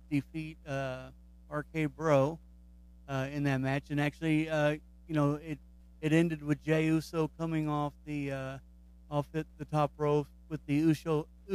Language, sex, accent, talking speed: English, male, American, 155 wpm